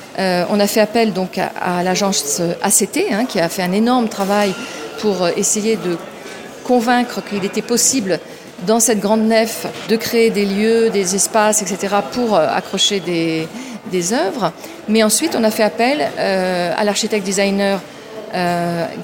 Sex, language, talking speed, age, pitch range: female, French, 160 wpm, 40-59, 195-245 Hz